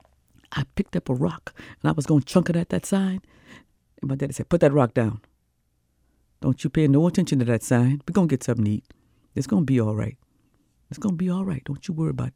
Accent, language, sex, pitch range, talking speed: American, English, female, 115-165 Hz, 255 wpm